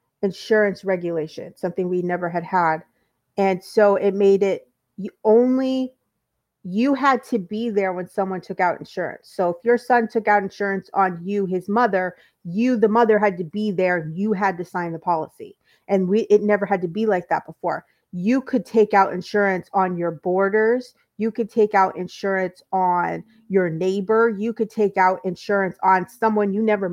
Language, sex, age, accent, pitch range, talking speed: English, female, 30-49, American, 185-220 Hz, 185 wpm